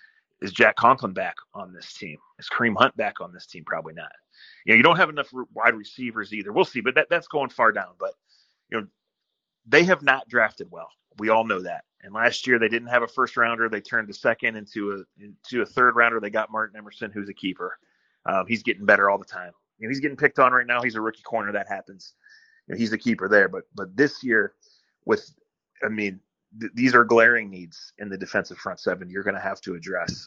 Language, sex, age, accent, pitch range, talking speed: English, male, 30-49, American, 100-130 Hz, 240 wpm